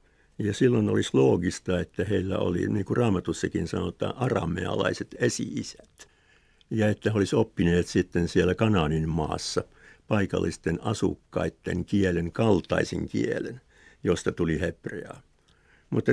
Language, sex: Finnish, male